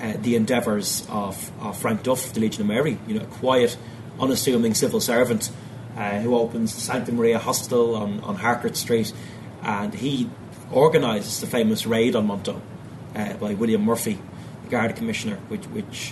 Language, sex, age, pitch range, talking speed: English, male, 30-49, 110-125 Hz, 170 wpm